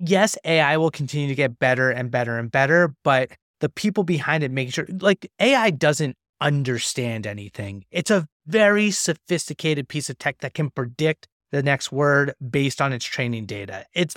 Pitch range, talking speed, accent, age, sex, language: 130-160 Hz, 180 wpm, American, 30-49, male, English